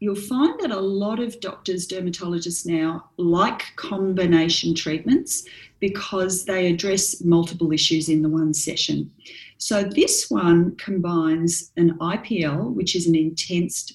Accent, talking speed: Australian, 135 wpm